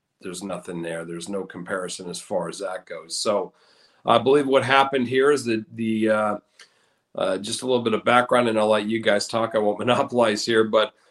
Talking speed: 210 wpm